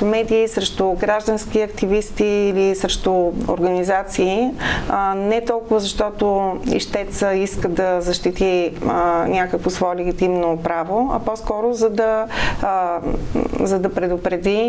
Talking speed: 100 wpm